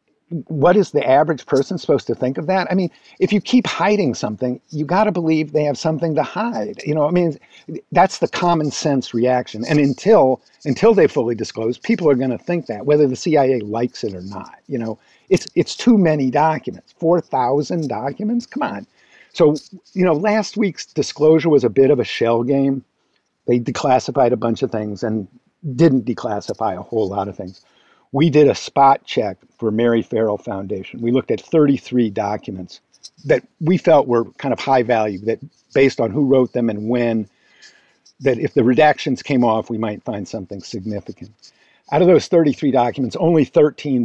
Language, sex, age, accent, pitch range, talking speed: English, male, 50-69, American, 115-155 Hz, 190 wpm